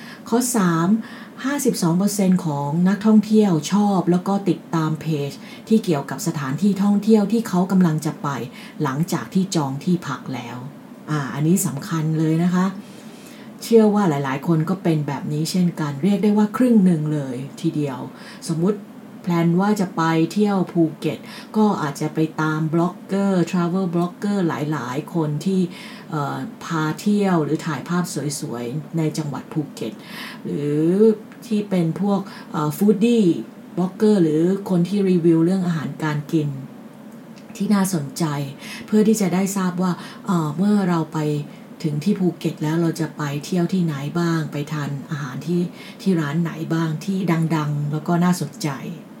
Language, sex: English, female